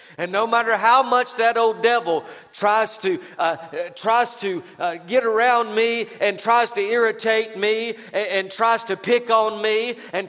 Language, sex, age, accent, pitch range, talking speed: English, male, 40-59, American, 155-220 Hz, 175 wpm